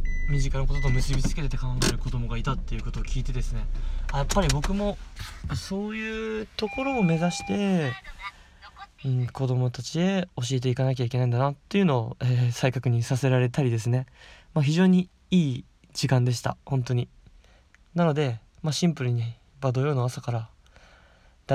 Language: Japanese